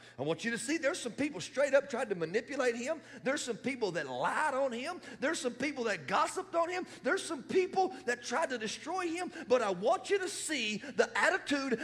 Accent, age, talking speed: American, 40-59, 225 wpm